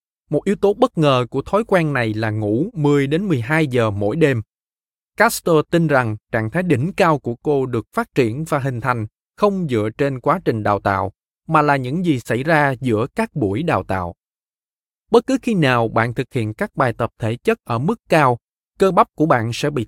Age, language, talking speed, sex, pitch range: 20-39, Vietnamese, 215 wpm, male, 120-170 Hz